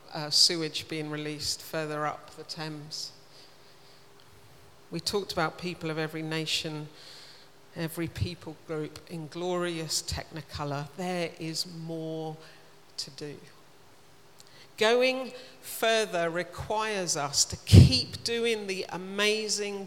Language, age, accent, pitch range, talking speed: English, 50-69, British, 155-200 Hz, 105 wpm